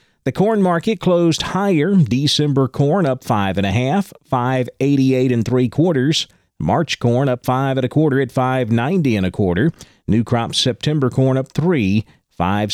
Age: 40-59